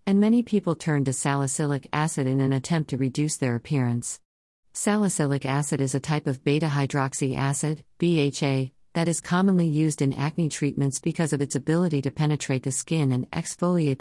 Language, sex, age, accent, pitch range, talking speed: English, female, 50-69, American, 135-160 Hz, 175 wpm